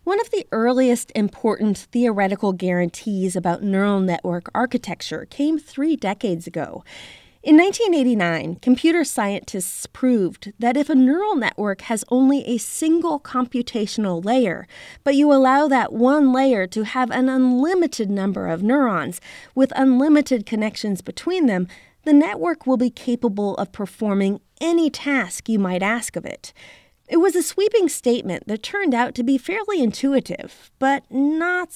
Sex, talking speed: female, 145 wpm